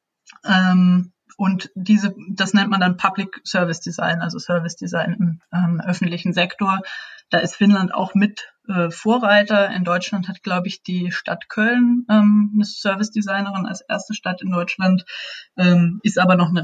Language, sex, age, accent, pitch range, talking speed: German, female, 20-39, German, 185-215 Hz, 160 wpm